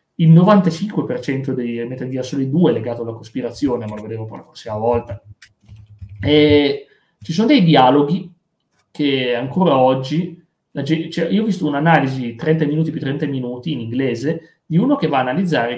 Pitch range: 125-165 Hz